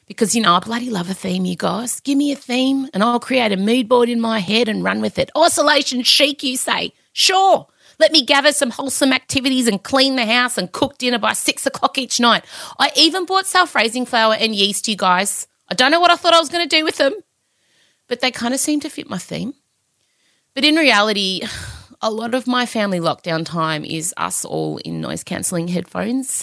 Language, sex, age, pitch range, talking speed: English, female, 30-49, 175-285 Hz, 220 wpm